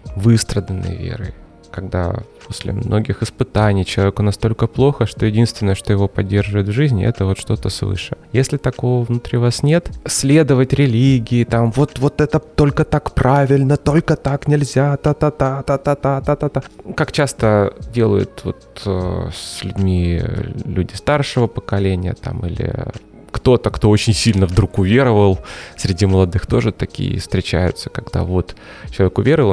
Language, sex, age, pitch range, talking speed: Russian, male, 20-39, 95-125 Hz, 130 wpm